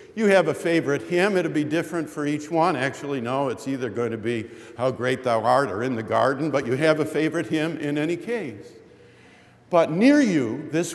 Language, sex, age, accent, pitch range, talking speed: English, male, 50-69, American, 120-180 Hz, 215 wpm